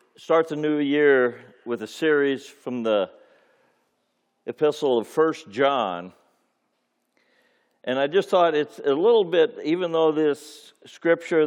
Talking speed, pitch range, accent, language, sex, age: 130 wpm, 110-155 Hz, American, English, male, 60-79